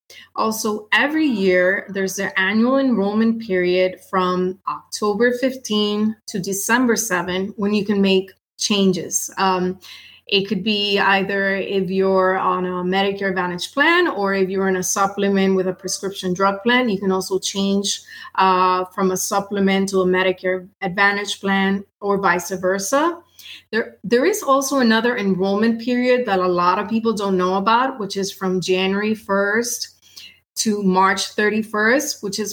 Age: 30-49